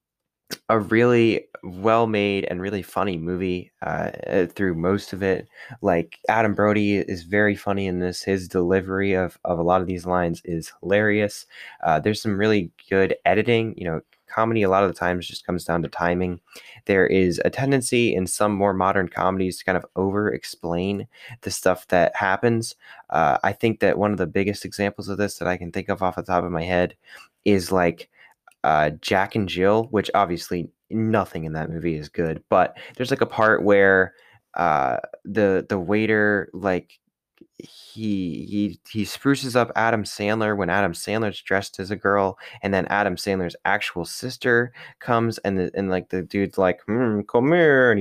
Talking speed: 185 wpm